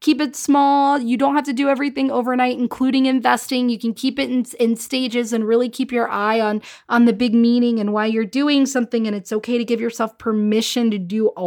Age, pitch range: 20-39, 210-270 Hz